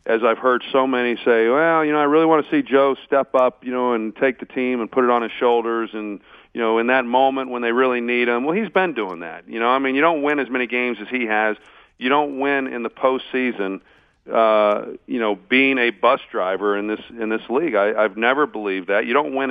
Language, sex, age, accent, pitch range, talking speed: English, male, 40-59, American, 110-130 Hz, 260 wpm